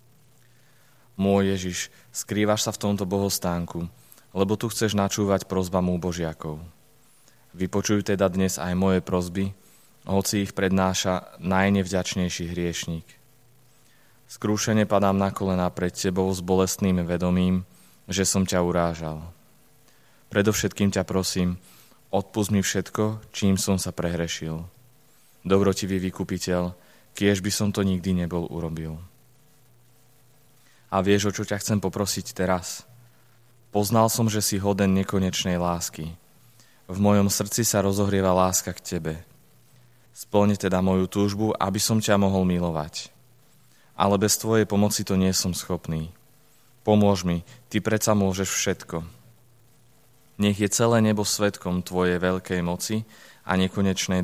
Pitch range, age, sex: 90-110 Hz, 20-39, male